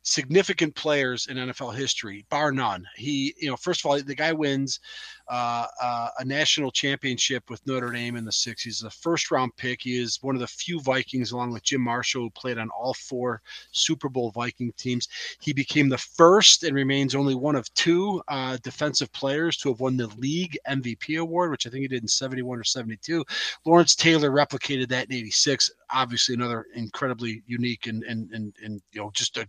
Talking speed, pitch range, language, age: 195 wpm, 125-155 Hz, English, 30-49